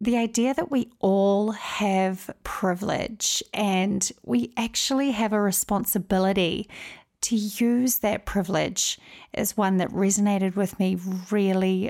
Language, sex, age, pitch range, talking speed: English, female, 30-49, 195-235 Hz, 120 wpm